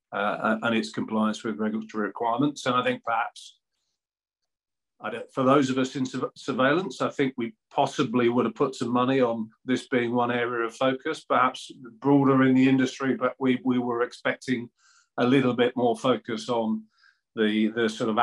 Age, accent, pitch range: 40-59, British, 110-130 Hz